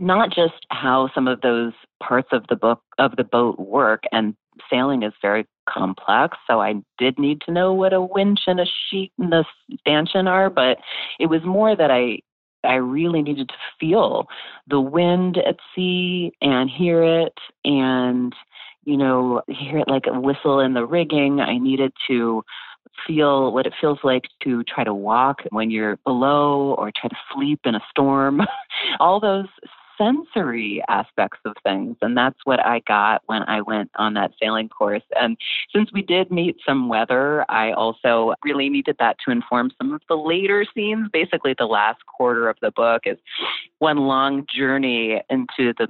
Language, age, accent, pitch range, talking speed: English, 30-49, American, 120-170 Hz, 180 wpm